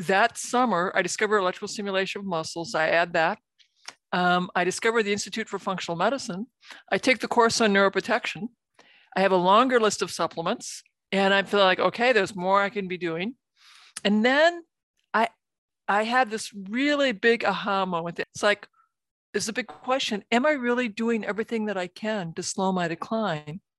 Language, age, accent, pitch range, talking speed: English, 50-69, American, 185-225 Hz, 180 wpm